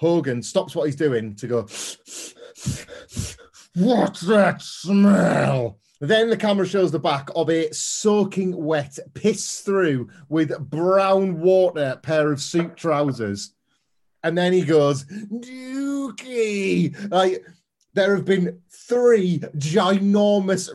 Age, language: 30-49, English